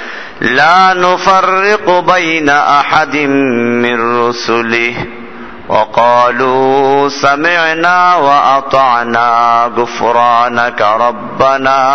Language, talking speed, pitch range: Bengali, 55 wpm, 120-160 Hz